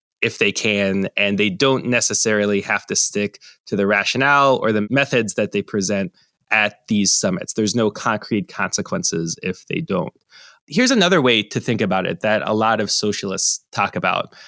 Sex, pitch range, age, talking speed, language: male, 110-145 Hz, 20-39, 180 wpm, English